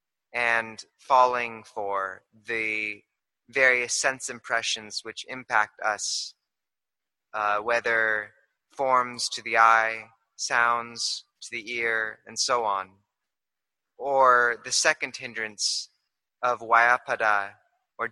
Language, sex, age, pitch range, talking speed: English, male, 20-39, 110-130 Hz, 100 wpm